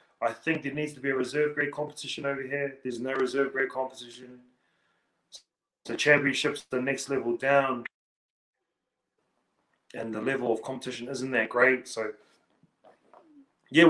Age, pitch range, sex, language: 20-39, 110-140 Hz, male, English